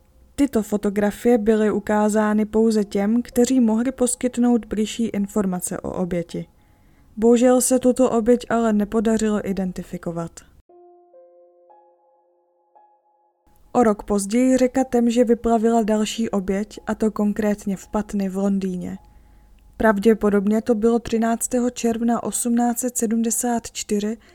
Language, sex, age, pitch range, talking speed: Czech, female, 20-39, 200-230 Hz, 105 wpm